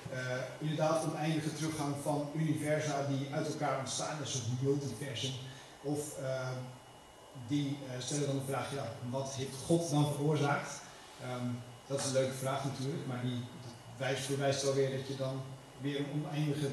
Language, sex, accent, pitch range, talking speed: Dutch, male, Dutch, 130-150 Hz, 170 wpm